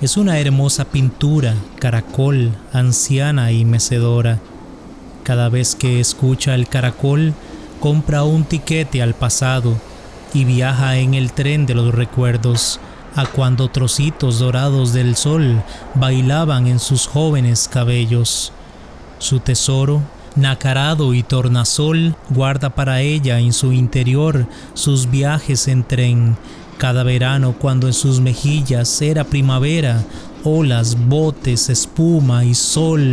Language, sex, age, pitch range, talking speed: English, male, 30-49, 125-140 Hz, 120 wpm